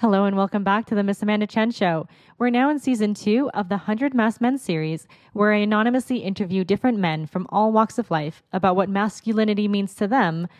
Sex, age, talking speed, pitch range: female, 20-39, 215 wpm, 170-220 Hz